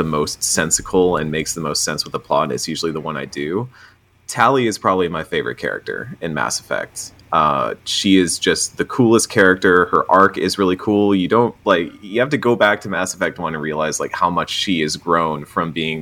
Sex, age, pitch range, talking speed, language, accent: male, 30-49, 80-105 Hz, 225 wpm, English, American